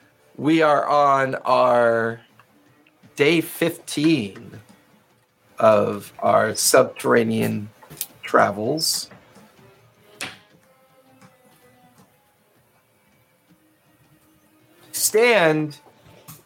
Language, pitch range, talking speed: English, 135-175 Hz, 40 wpm